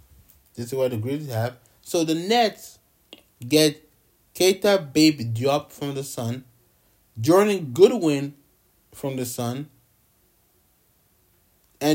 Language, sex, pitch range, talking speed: English, male, 115-160 Hz, 110 wpm